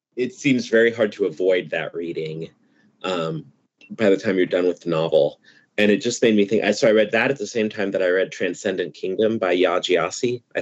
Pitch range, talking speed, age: 90-135 Hz, 225 wpm, 30-49